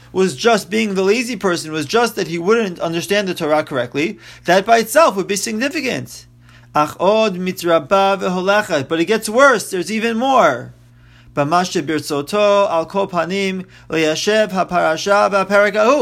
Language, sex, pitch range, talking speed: English, male, 150-215 Hz, 105 wpm